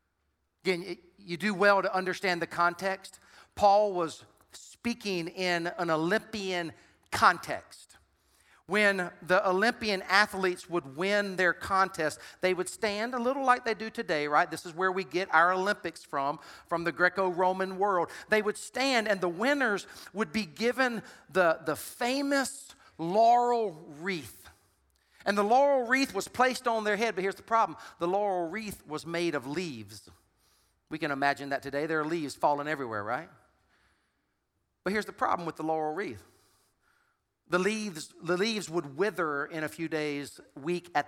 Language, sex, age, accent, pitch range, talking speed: English, male, 40-59, American, 170-230 Hz, 160 wpm